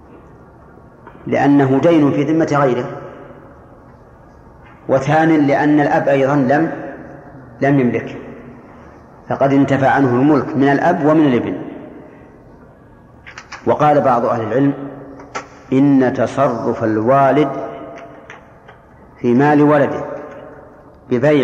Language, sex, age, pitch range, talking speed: Arabic, male, 40-59, 130-145 Hz, 85 wpm